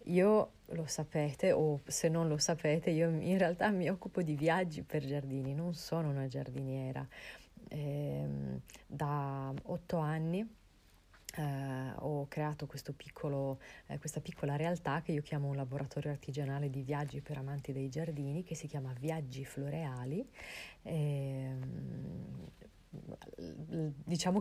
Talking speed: 130 wpm